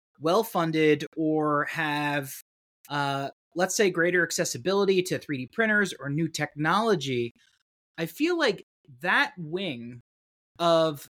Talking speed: 110 wpm